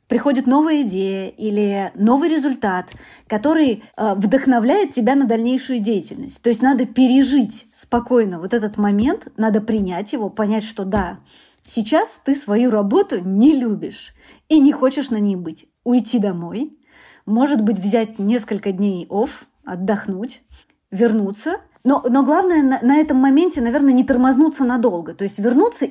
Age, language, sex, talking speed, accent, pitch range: 30-49, Russian, female, 145 wpm, native, 205-265 Hz